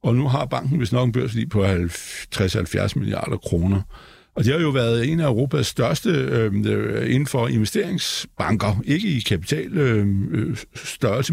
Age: 60-79